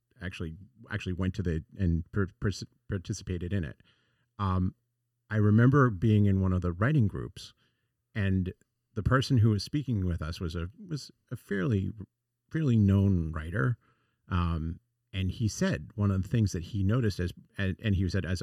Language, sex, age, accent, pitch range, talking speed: English, male, 40-59, American, 90-115 Hz, 175 wpm